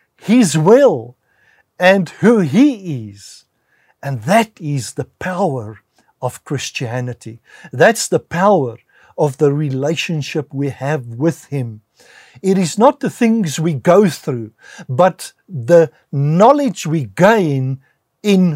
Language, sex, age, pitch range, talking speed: English, male, 60-79, 120-170 Hz, 120 wpm